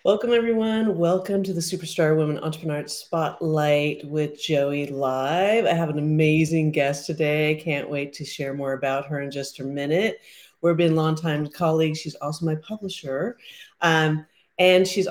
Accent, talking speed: American, 165 wpm